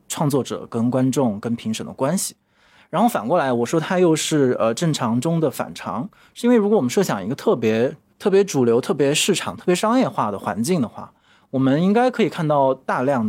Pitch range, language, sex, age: 125-180 Hz, Chinese, male, 20-39